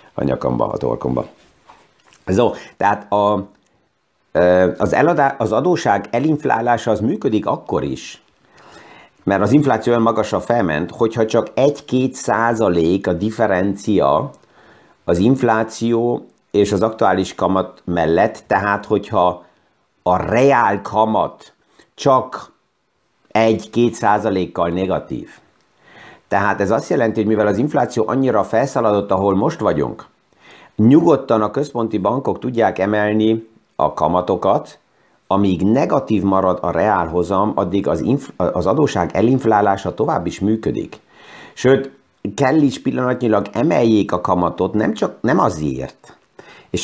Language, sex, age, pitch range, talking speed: Hungarian, male, 50-69, 100-120 Hz, 120 wpm